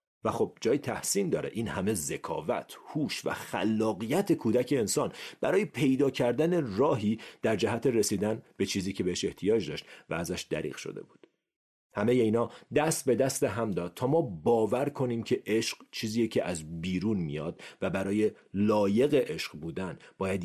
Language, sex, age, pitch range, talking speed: Persian, male, 40-59, 100-145 Hz, 160 wpm